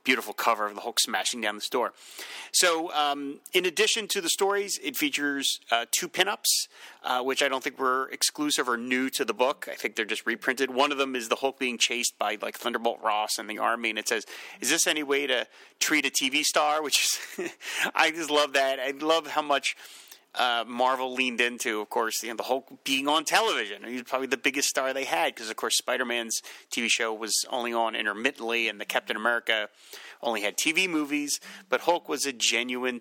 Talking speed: 215 wpm